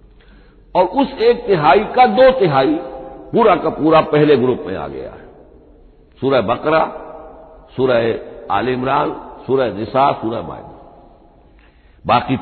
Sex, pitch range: male, 110-145 Hz